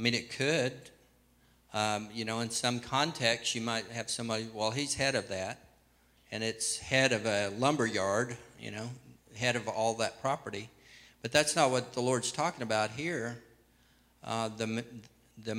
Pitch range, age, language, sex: 110-125 Hz, 50-69, English, male